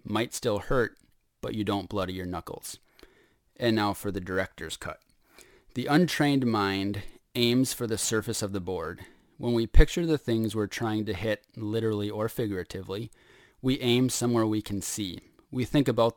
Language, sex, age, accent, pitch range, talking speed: English, male, 30-49, American, 95-115 Hz, 170 wpm